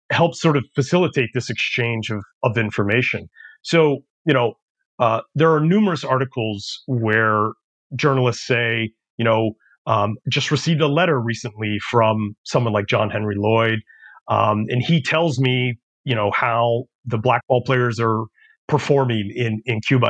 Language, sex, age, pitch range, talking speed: English, male, 30-49, 110-135 Hz, 150 wpm